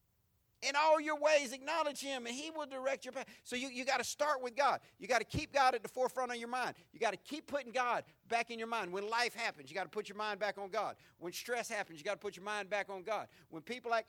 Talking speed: 280 wpm